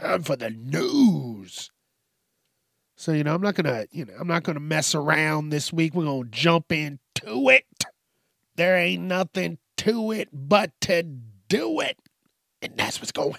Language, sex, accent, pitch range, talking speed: English, male, American, 130-180 Hz, 165 wpm